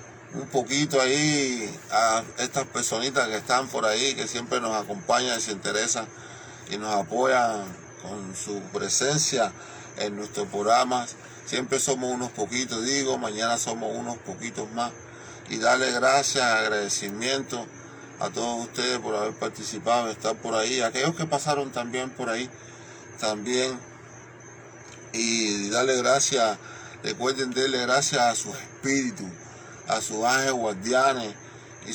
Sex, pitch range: male, 110-135 Hz